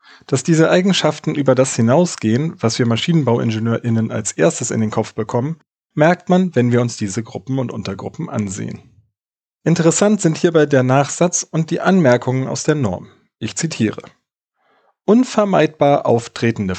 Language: German